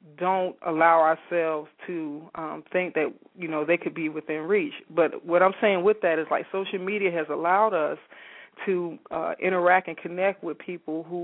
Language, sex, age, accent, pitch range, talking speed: English, female, 40-59, American, 160-180 Hz, 185 wpm